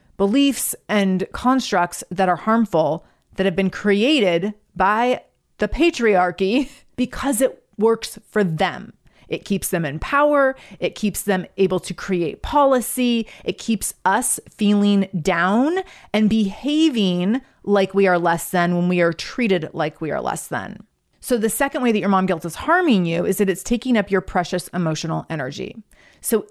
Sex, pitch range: female, 185-240 Hz